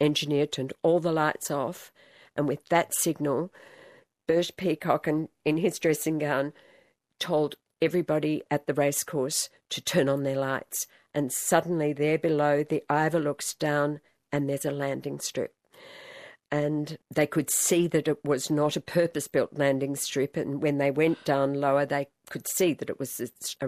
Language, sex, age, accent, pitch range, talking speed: English, female, 50-69, Australian, 140-160 Hz, 165 wpm